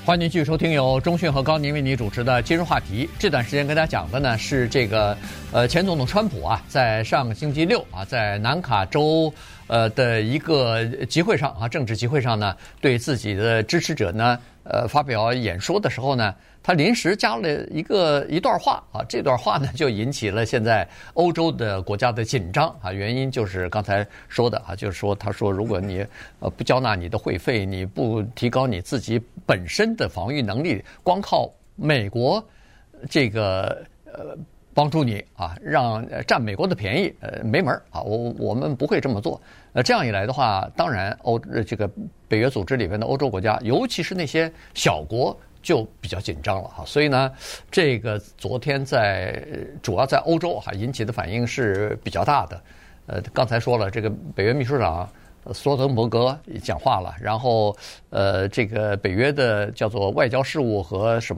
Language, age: Chinese, 50-69